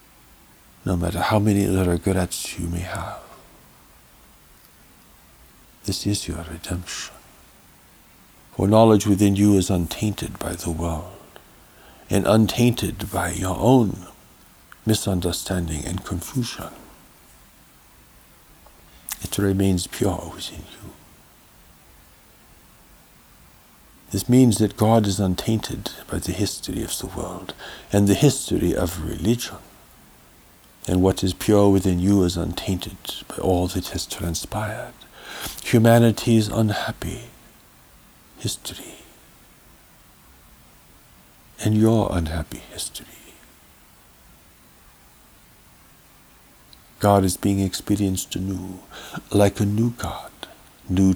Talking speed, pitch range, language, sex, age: 95 wpm, 85-105 Hz, English, male, 60-79